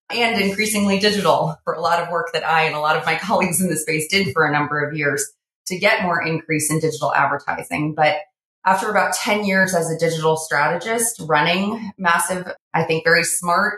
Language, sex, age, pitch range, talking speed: English, female, 30-49, 155-185 Hz, 205 wpm